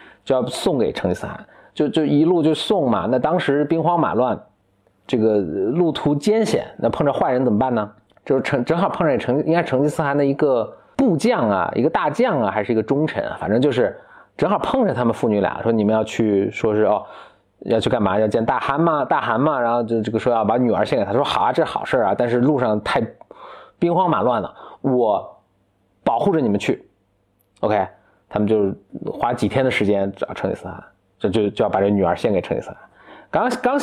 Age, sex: 30-49, male